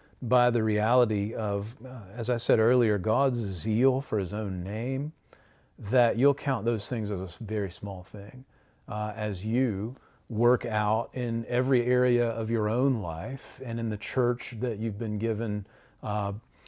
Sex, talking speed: male, 165 wpm